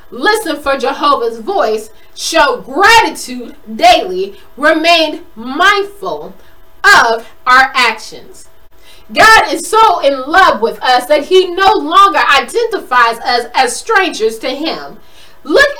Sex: female